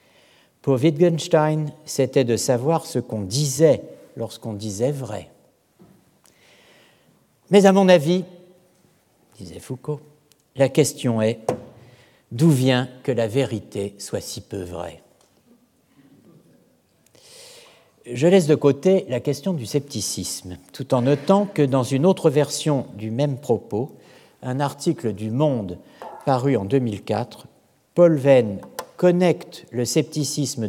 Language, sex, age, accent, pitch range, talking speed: French, male, 60-79, French, 115-165 Hz, 115 wpm